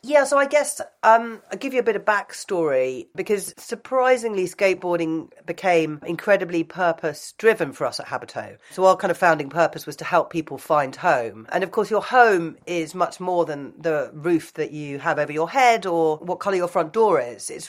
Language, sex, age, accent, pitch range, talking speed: English, female, 40-59, British, 155-190 Hz, 205 wpm